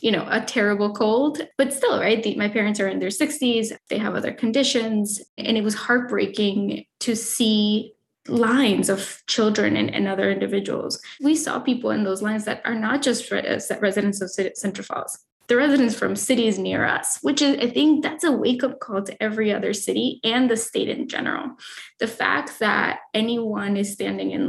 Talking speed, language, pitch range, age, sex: 195 wpm, English, 205-250 Hz, 10-29, female